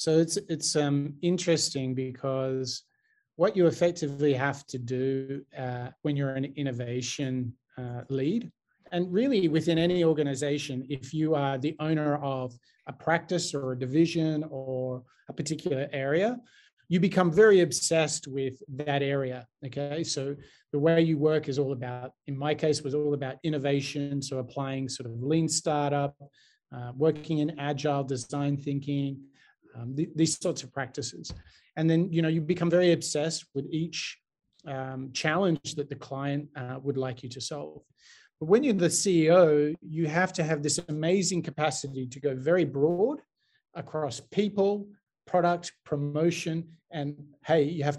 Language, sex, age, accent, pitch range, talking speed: Romanian, male, 30-49, Australian, 135-165 Hz, 155 wpm